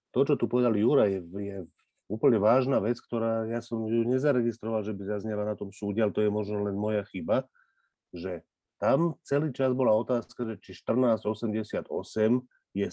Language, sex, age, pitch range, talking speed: Slovak, male, 40-59, 100-125 Hz, 170 wpm